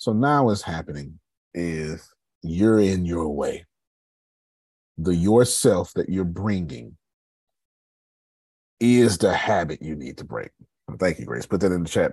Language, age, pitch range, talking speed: English, 40-59, 80-105 Hz, 145 wpm